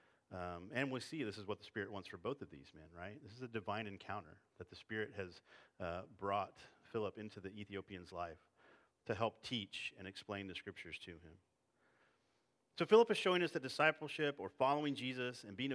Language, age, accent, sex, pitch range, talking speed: English, 40-59, American, male, 95-125 Hz, 200 wpm